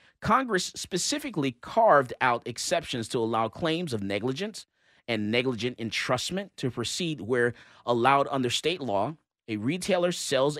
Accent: American